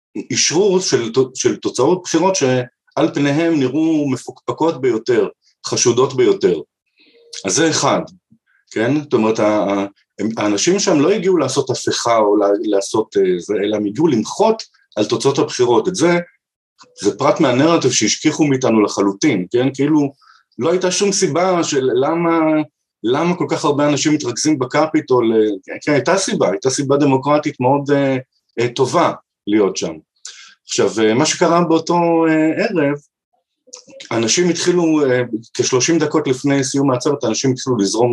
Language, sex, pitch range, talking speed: Hebrew, male, 125-180 Hz, 130 wpm